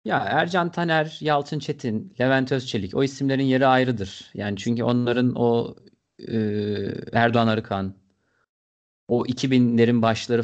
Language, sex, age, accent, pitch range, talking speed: Turkish, male, 40-59, native, 110-130 Hz, 120 wpm